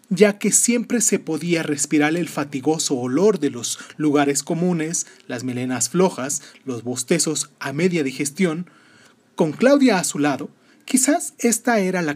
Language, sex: Spanish, male